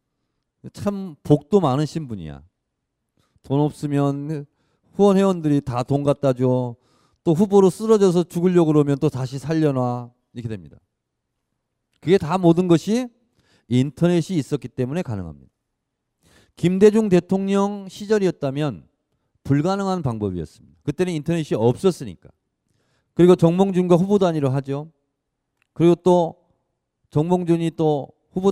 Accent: native